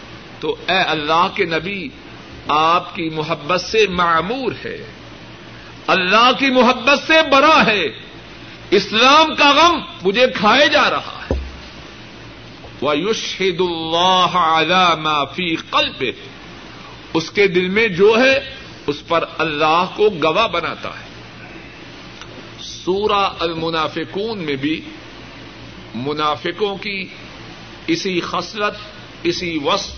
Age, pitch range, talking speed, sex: 60-79, 155-200 Hz, 105 wpm, male